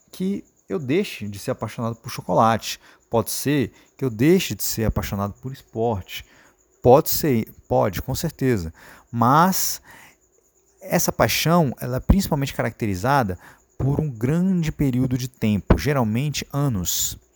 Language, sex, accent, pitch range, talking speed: Portuguese, male, Brazilian, 110-155 Hz, 130 wpm